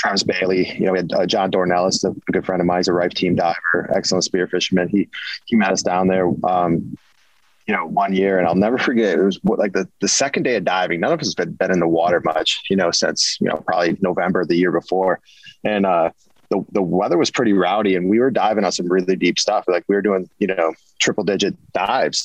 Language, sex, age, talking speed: English, male, 20-39, 250 wpm